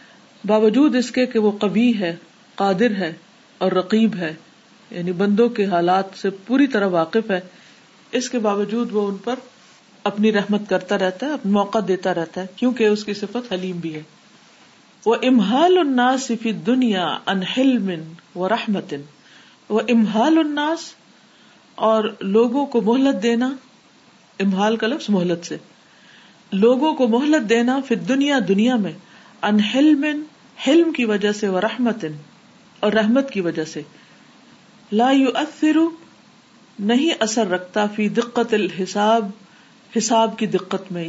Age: 50-69